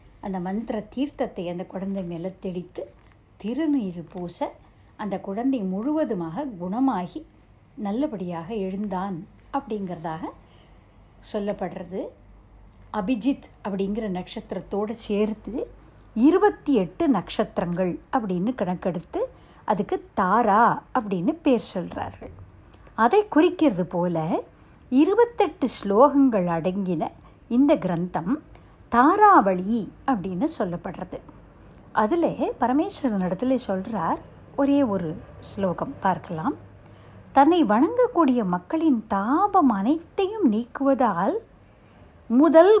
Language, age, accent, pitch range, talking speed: Tamil, 60-79, native, 190-280 Hz, 80 wpm